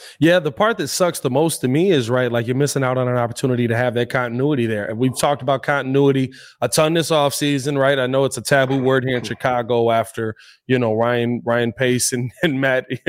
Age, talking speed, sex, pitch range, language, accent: 20-39, 235 wpm, male, 120-155 Hz, English, American